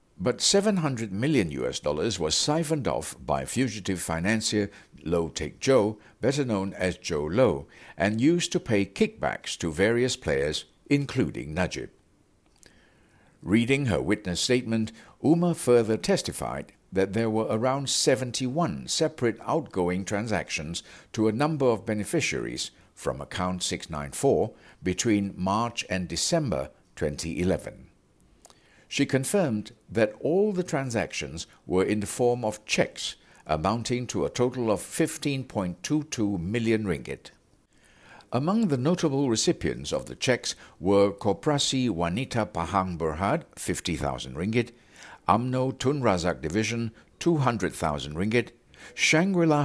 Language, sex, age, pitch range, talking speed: English, male, 60-79, 90-135 Hz, 120 wpm